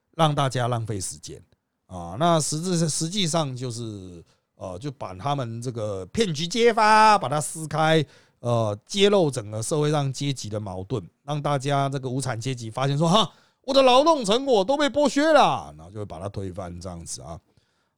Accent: native